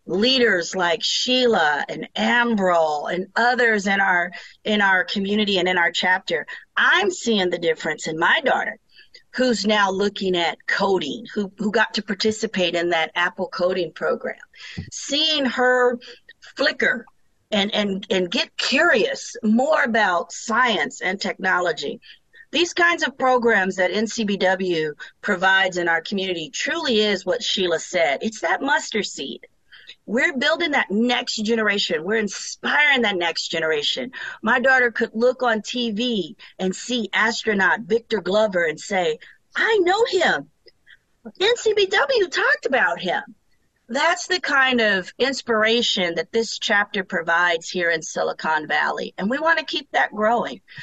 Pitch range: 190-255 Hz